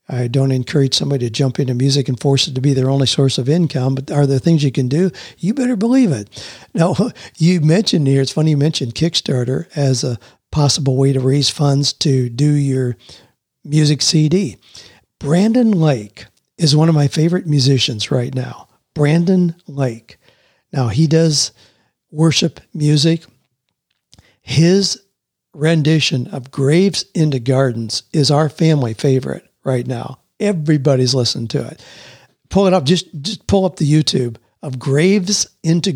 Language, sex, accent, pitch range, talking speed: English, male, American, 130-170 Hz, 160 wpm